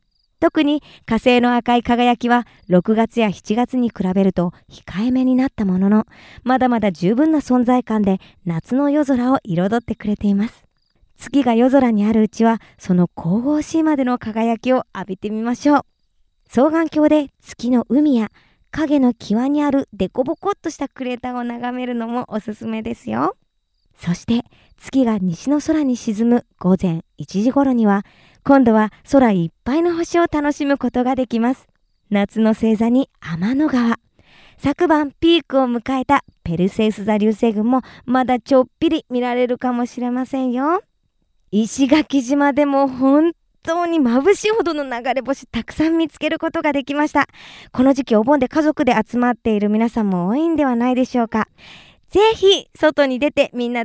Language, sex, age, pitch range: Japanese, male, 20-39, 225-285 Hz